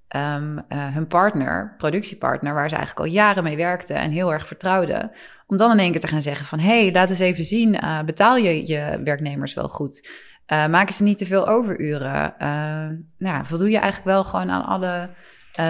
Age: 20-39